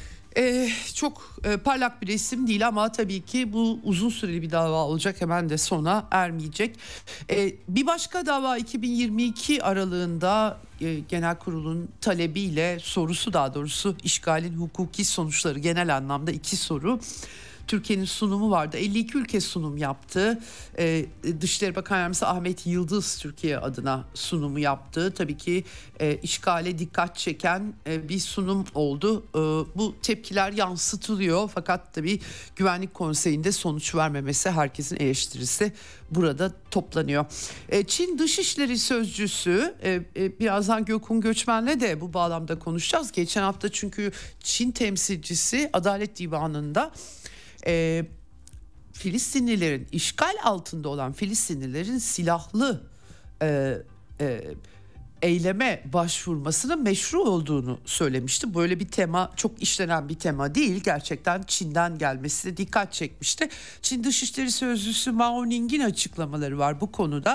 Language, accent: Turkish, native